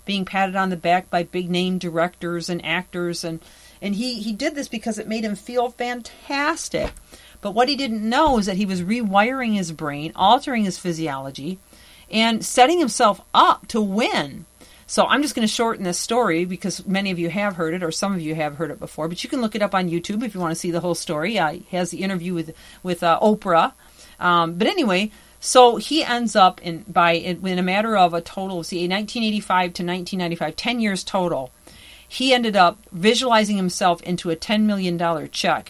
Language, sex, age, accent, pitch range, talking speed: English, female, 40-59, American, 175-230 Hz, 210 wpm